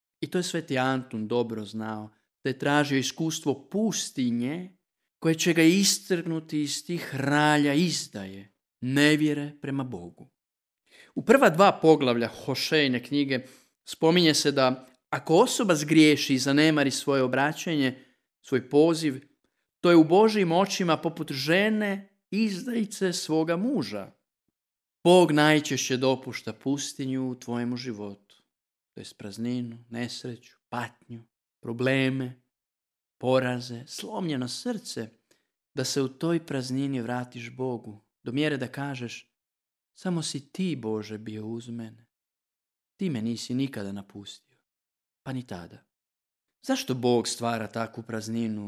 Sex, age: male, 40-59